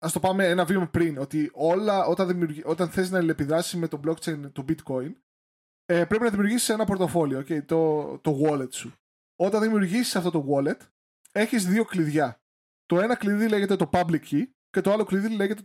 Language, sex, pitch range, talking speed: Greek, male, 155-195 Hz, 180 wpm